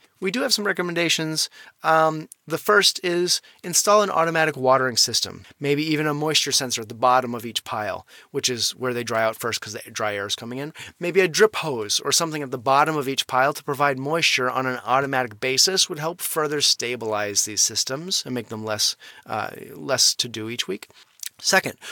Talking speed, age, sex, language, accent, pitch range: 205 wpm, 30-49, male, English, American, 125-175 Hz